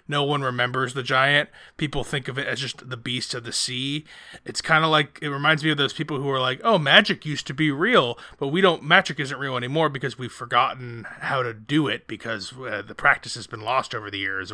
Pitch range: 120-150 Hz